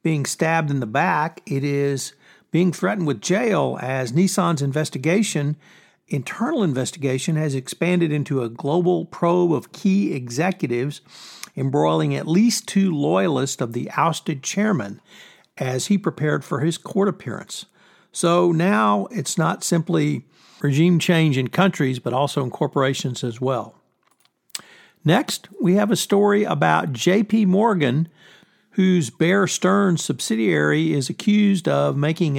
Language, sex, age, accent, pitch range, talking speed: English, male, 60-79, American, 135-180 Hz, 135 wpm